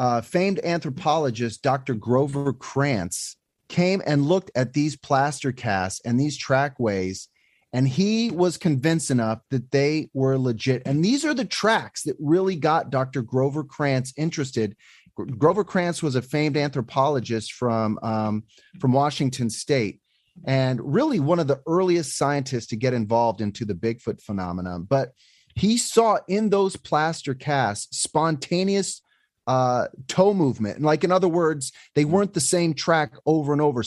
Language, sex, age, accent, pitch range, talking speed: English, male, 30-49, American, 125-160 Hz, 150 wpm